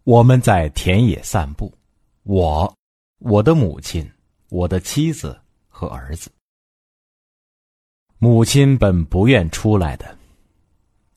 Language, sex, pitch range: Chinese, male, 85-120 Hz